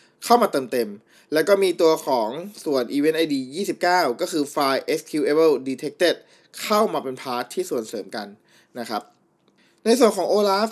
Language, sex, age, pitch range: Thai, male, 20-39, 130-175 Hz